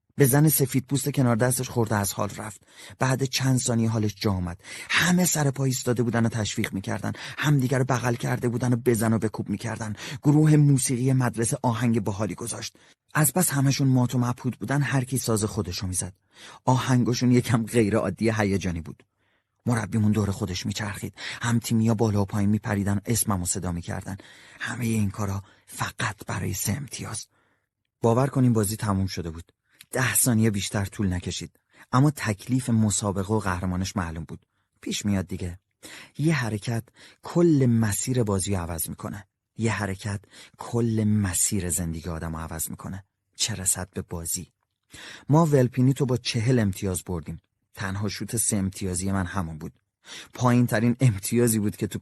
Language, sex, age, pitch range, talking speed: Persian, male, 30-49, 100-125 Hz, 160 wpm